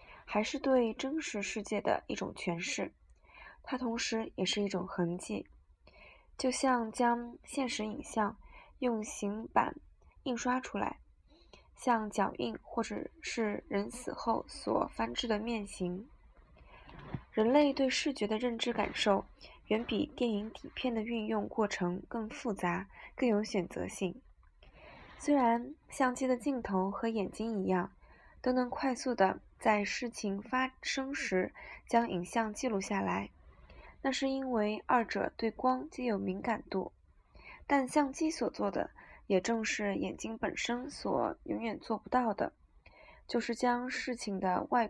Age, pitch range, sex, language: 20-39, 200-255 Hz, female, Chinese